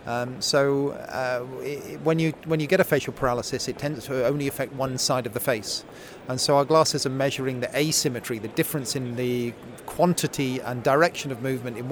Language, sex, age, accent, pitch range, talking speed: English, male, 30-49, British, 130-155 Hz, 190 wpm